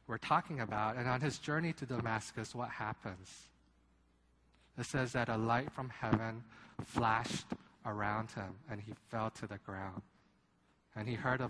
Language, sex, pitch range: Korean, male, 100-125 Hz